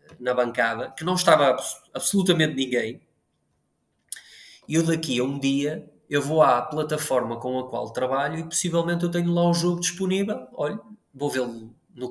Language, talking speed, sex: Portuguese, 170 wpm, male